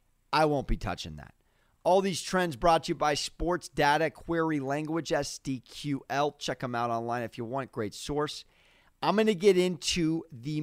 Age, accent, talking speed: 30-49, American, 180 wpm